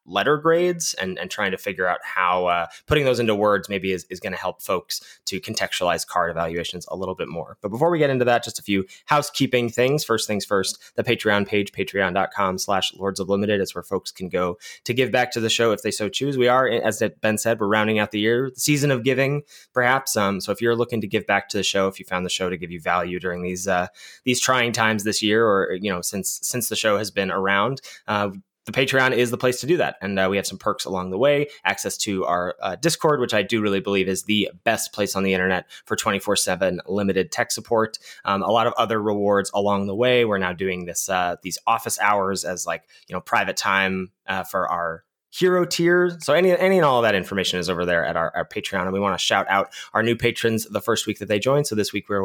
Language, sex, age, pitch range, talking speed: English, male, 20-39, 95-125 Hz, 255 wpm